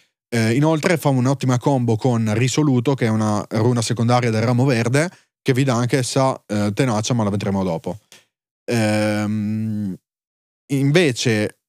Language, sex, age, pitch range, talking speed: Italian, male, 30-49, 105-135 Hz, 140 wpm